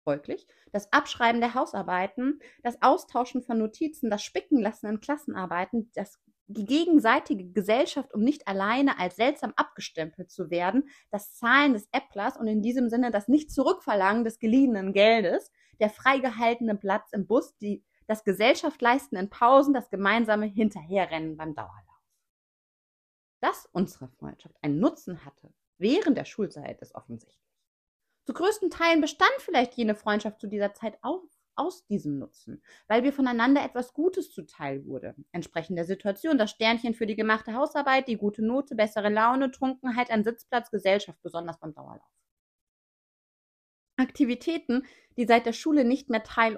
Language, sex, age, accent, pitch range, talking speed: German, female, 30-49, German, 200-270 Hz, 150 wpm